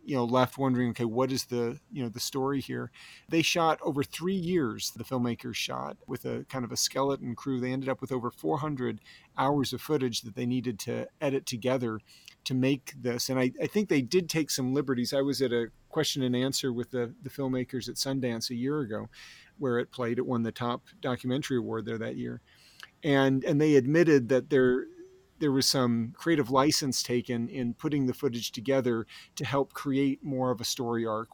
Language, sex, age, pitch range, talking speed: English, male, 40-59, 120-140 Hz, 205 wpm